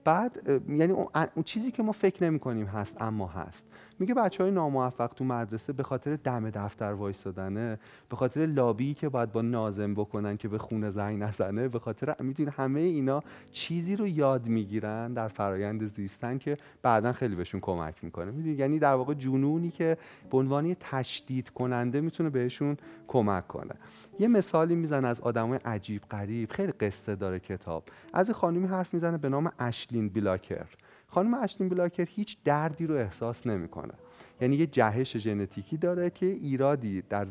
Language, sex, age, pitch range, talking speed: Persian, male, 30-49, 110-160 Hz, 170 wpm